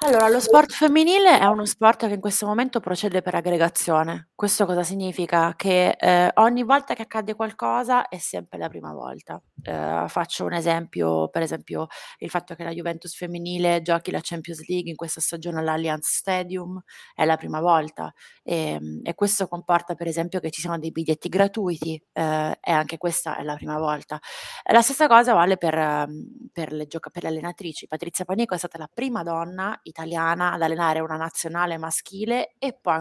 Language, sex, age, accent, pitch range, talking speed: Italian, female, 20-39, native, 160-200 Hz, 185 wpm